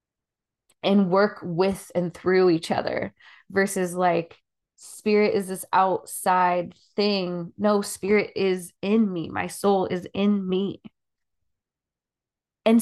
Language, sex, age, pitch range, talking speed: English, female, 20-39, 180-210 Hz, 115 wpm